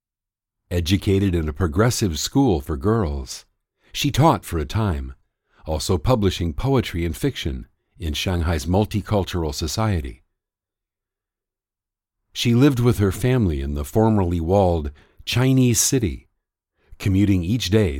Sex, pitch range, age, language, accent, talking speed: male, 85-115 Hz, 50-69, English, American, 115 wpm